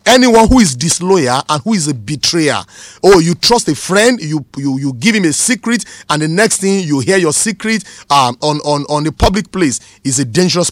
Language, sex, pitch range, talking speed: English, male, 150-210 Hz, 225 wpm